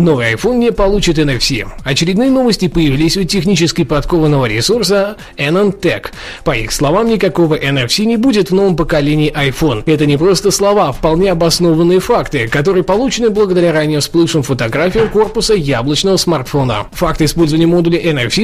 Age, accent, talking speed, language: 20-39, native, 145 wpm, Russian